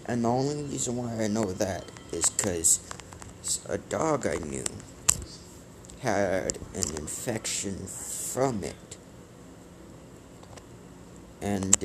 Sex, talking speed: male, 100 wpm